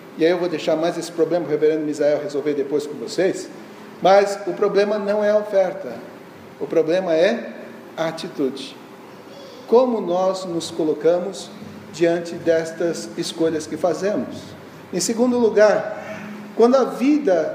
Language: Portuguese